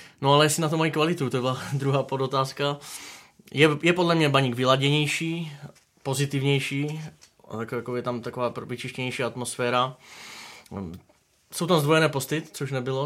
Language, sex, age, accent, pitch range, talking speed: Czech, male, 20-39, native, 125-140 Hz, 135 wpm